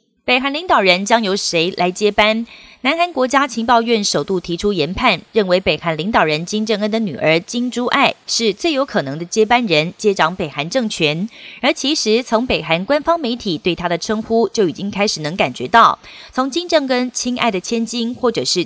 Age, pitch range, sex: 30-49, 190-240 Hz, female